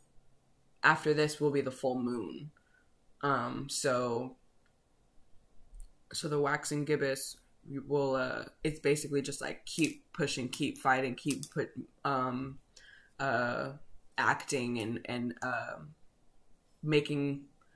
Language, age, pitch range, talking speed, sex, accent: English, 20-39, 130-150 Hz, 110 wpm, female, American